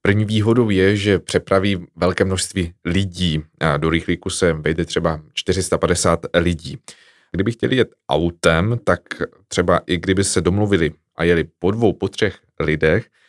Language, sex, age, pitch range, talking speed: Czech, male, 20-39, 85-100 Hz, 145 wpm